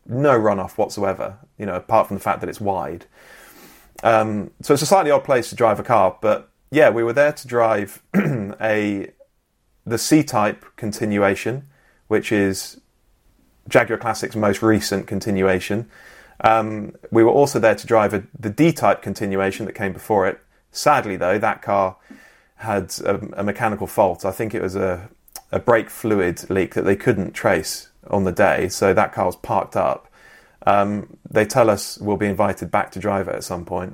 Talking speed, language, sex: 180 wpm, English, male